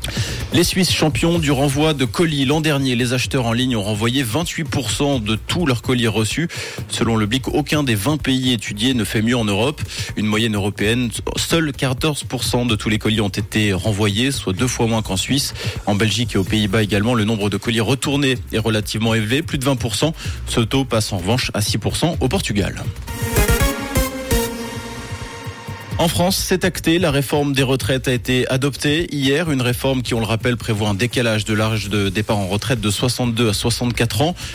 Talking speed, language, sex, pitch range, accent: 190 wpm, French, male, 110-135 Hz, French